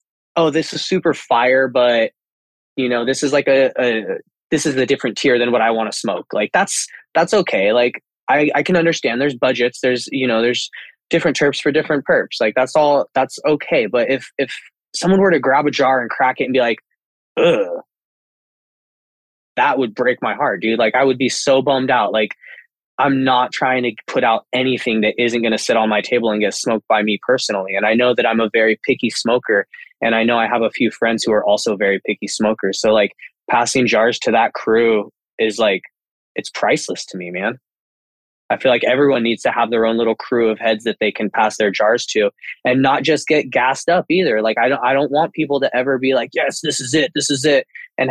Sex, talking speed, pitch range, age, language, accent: male, 230 wpm, 110-140 Hz, 20-39, English, American